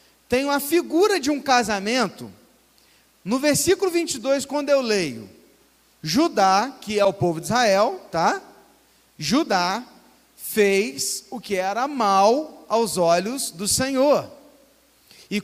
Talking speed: 120 wpm